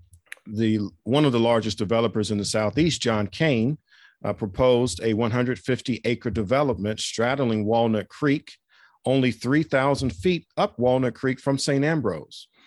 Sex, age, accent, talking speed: male, 50-69, American, 135 wpm